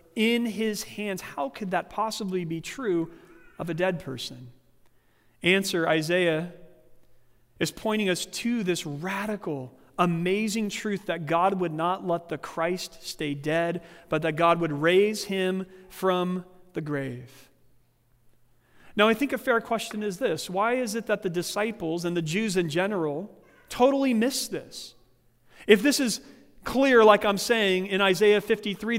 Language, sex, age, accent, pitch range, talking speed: English, male, 40-59, American, 160-215 Hz, 150 wpm